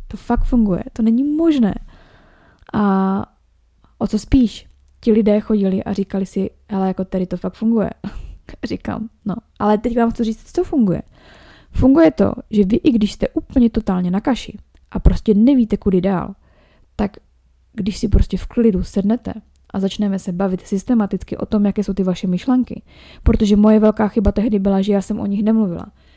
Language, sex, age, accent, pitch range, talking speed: Czech, female, 20-39, native, 195-235 Hz, 180 wpm